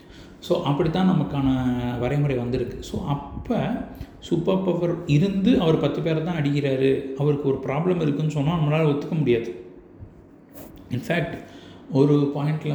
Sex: male